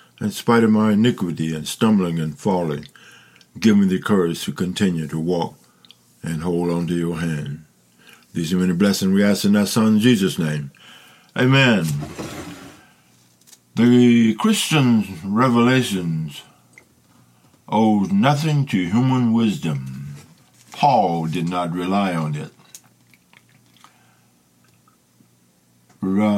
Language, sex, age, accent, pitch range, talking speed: English, male, 60-79, American, 75-120 Hz, 115 wpm